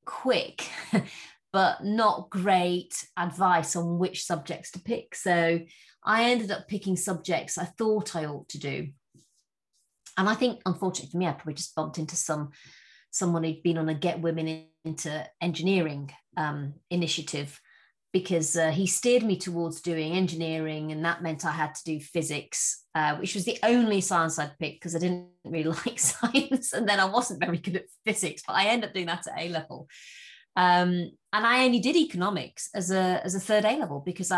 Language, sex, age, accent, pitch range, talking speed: English, female, 30-49, British, 160-195 Hz, 180 wpm